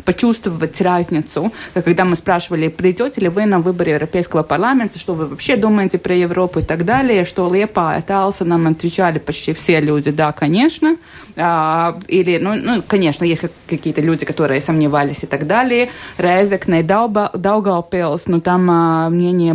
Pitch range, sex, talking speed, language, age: 160-185 Hz, female, 145 wpm, Russian, 20-39